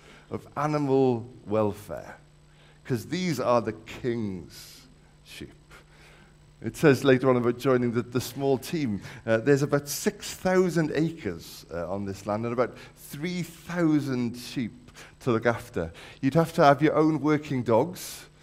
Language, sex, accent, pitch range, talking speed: English, male, British, 110-155 Hz, 140 wpm